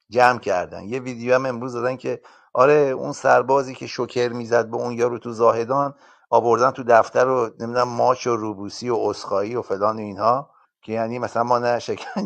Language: Persian